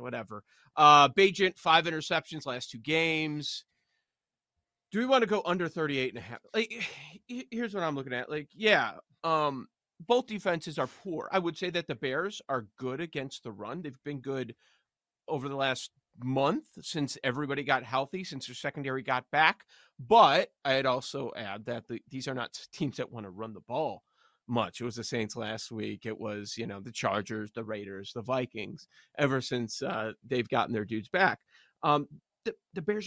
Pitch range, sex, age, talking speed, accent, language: 125-180 Hz, male, 30-49, 185 wpm, American, English